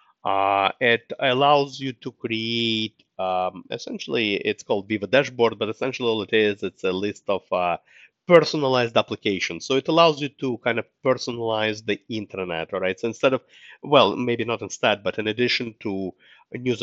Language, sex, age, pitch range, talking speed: English, male, 30-49, 95-125 Hz, 170 wpm